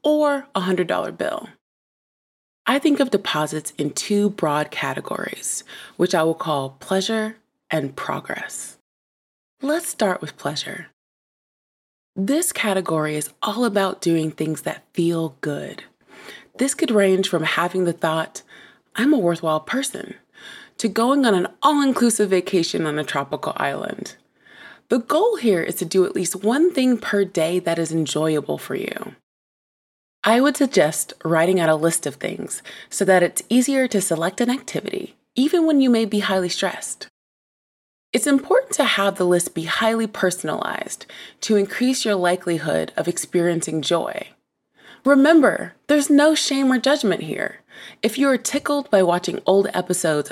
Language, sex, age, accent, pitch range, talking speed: English, female, 20-39, American, 170-260 Hz, 150 wpm